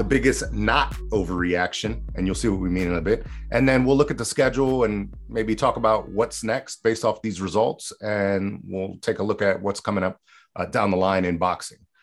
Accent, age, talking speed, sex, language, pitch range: American, 30-49, 220 wpm, male, English, 95-110 Hz